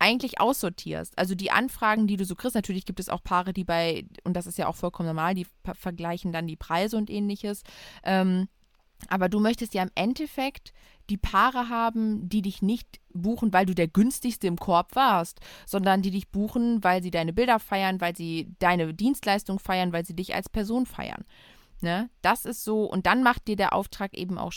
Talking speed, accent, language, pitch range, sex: 200 wpm, German, German, 180-215 Hz, female